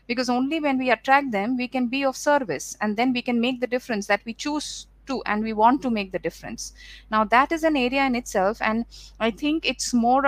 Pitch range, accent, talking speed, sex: 225-270 Hz, Indian, 240 wpm, female